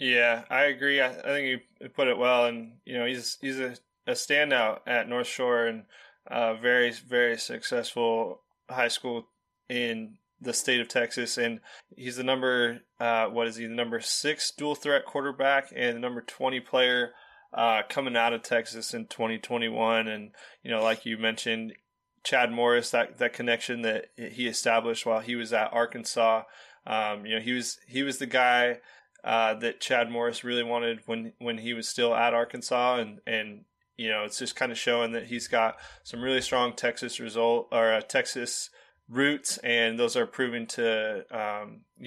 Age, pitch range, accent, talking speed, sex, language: 20-39, 115-125 Hz, American, 185 wpm, male, English